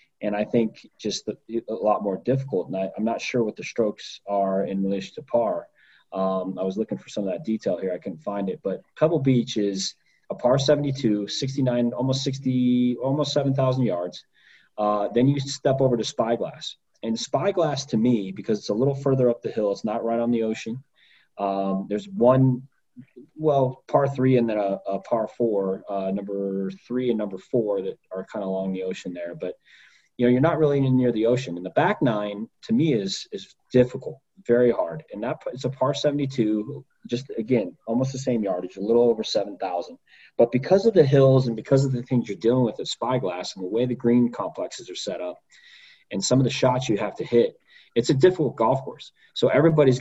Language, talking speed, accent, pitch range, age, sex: English, 210 wpm, American, 105-135 Hz, 30-49, male